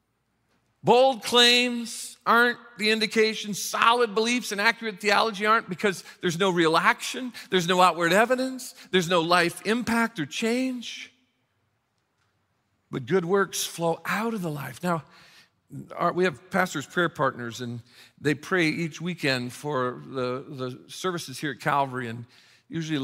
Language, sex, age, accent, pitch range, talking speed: English, male, 50-69, American, 135-195 Hz, 140 wpm